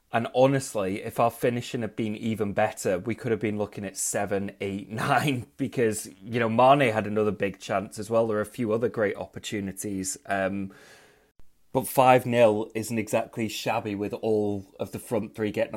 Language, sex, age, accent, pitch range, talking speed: English, male, 20-39, British, 105-120 Hz, 175 wpm